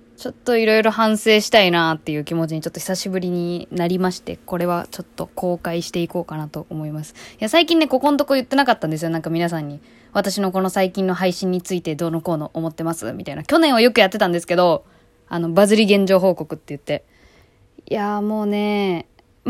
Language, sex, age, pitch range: Japanese, female, 20-39, 170-220 Hz